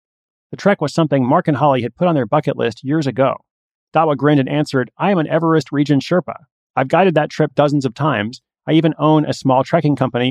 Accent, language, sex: American, English, male